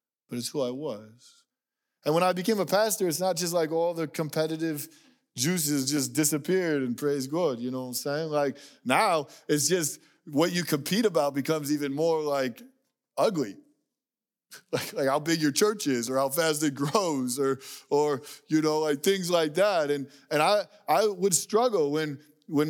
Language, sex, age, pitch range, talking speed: English, male, 20-39, 150-195 Hz, 185 wpm